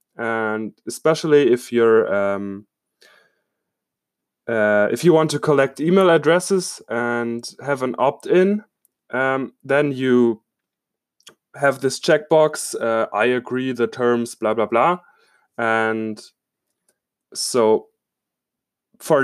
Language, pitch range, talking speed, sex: English, 115-155 Hz, 105 wpm, male